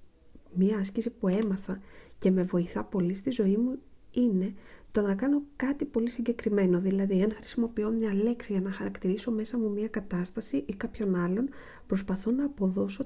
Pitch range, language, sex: 190-245 Hz, Greek, female